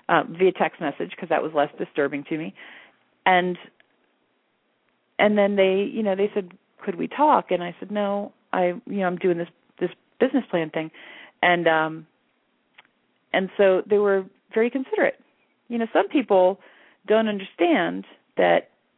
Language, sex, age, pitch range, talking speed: English, female, 40-59, 170-215 Hz, 160 wpm